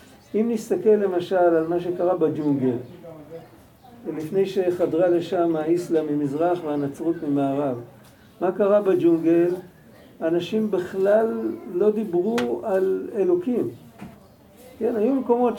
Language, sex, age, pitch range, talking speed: Hebrew, male, 50-69, 170-220 Hz, 100 wpm